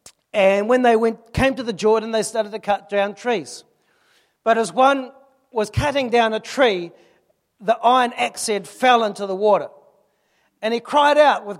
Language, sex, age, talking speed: English, male, 40-59, 180 wpm